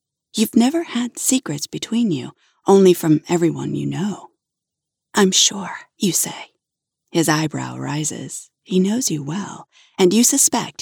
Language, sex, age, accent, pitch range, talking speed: English, female, 40-59, American, 160-215 Hz, 140 wpm